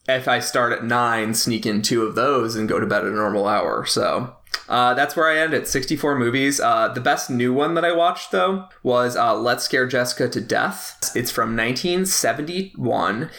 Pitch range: 120-160 Hz